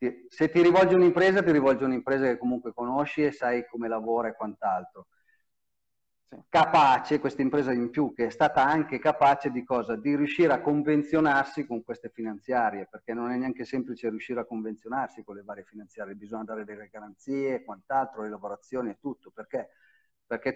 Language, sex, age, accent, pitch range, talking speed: Italian, male, 40-59, native, 115-140 Hz, 170 wpm